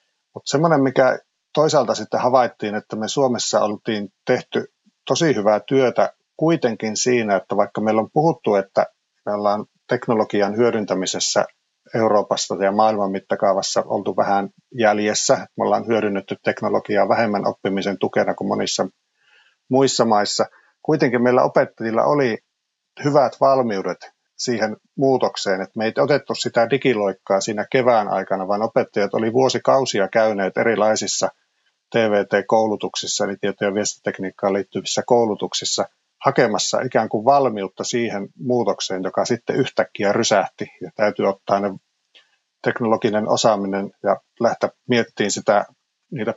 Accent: native